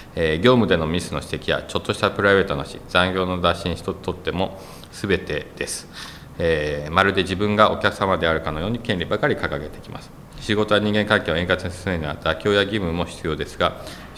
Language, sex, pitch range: Japanese, male, 80-100 Hz